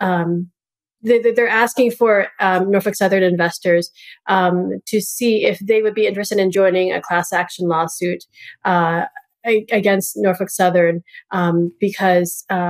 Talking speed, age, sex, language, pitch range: 140 wpm, 30-49, female, English, 175-210 Hz